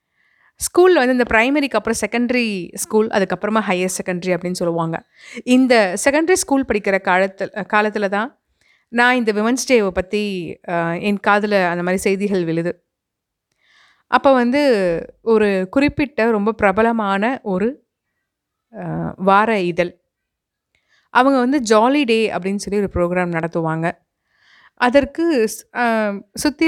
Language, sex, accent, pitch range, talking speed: Tamil, female, native, 190-245 Hz, 110 wpm